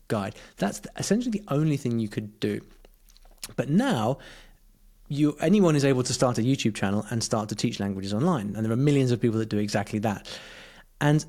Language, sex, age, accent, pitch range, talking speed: English, male, 30-49, British, 110-155 Hz, 195 wpm